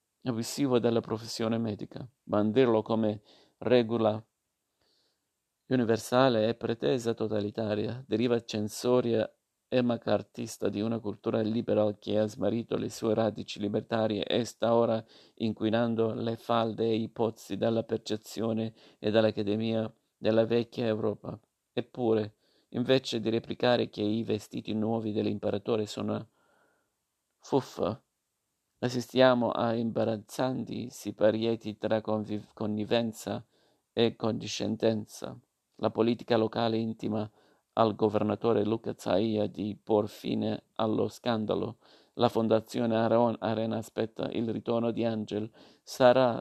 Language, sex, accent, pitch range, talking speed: Italian, male, native, 110-115 Hz, 110 wpm